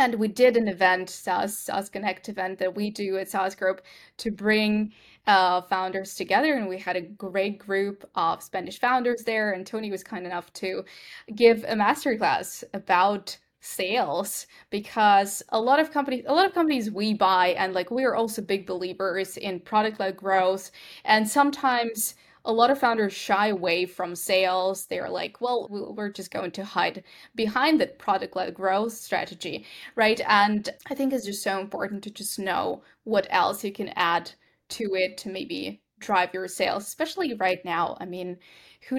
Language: English